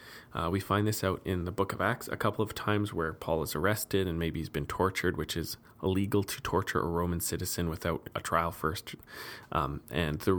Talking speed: 220 wpm